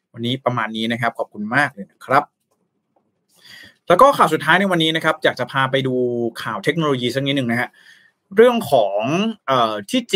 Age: 20-39